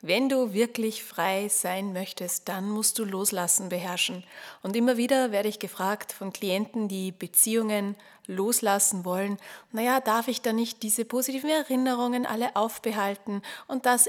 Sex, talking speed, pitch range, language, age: female, 150 wpm, 200-245 Hz, German, 30-49